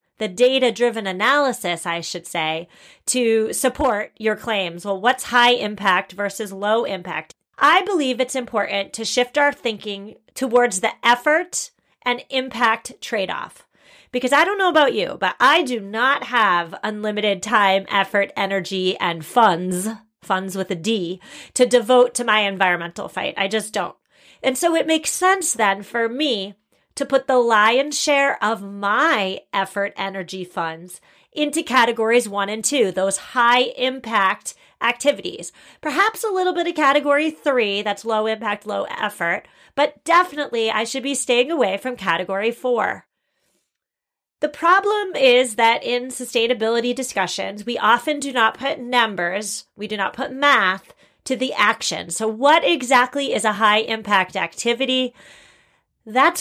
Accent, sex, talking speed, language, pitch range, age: American, female, 145 wpm, English, 200-265 Hz, 30-49